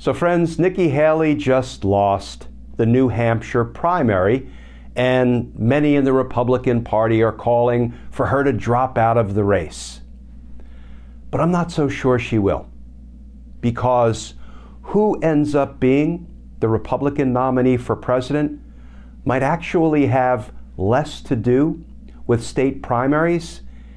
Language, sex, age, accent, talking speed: English, male, 50-69, American, 130 wpm